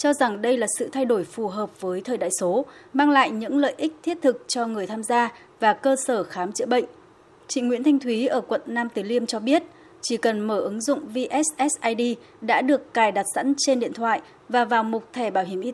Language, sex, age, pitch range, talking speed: Vietnamese, female, 20-39, 220-280 Hz, 235 wpm